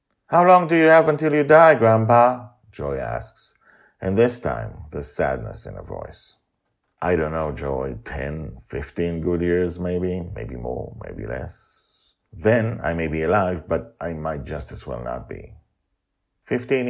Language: English